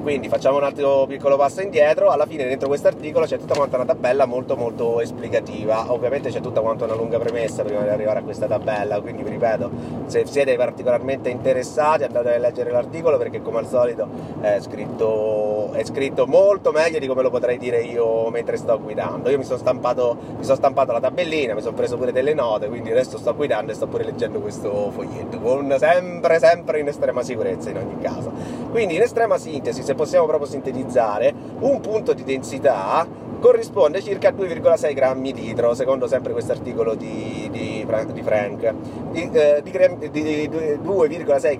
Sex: male